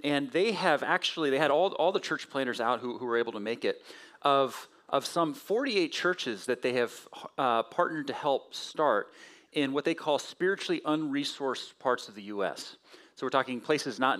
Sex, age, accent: male, 40-59, American